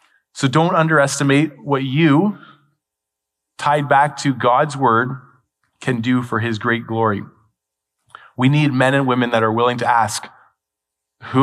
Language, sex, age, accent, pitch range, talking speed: English, male, 30-49, American, 120-155 Hz, 140 wpm